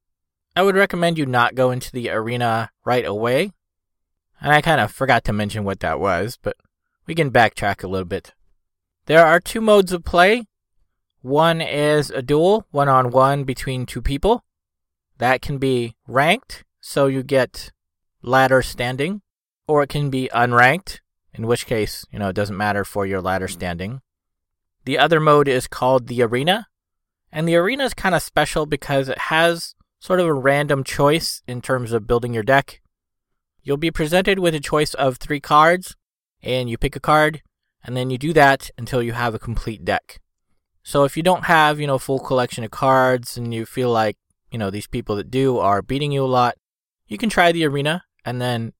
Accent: American